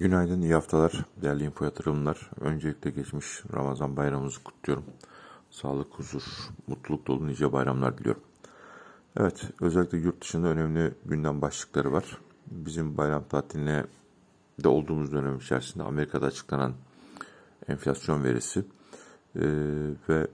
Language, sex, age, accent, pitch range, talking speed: Turkish, male, 50-69, native, 70-80 Hz, 115 wpm